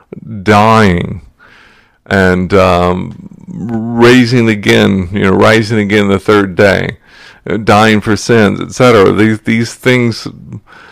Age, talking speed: 40-59, 105 wpm